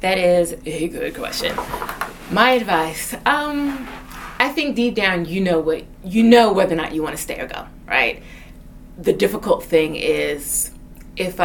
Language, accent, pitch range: English, American, 165-210 Hz